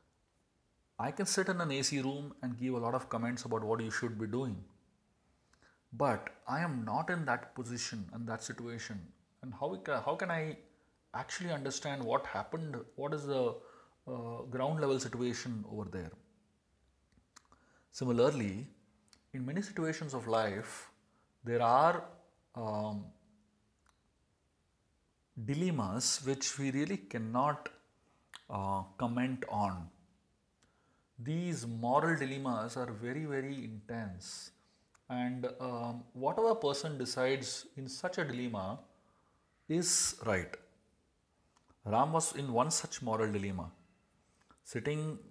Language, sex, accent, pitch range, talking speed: English, male, Indian, 110-140 Hz, 120 wpm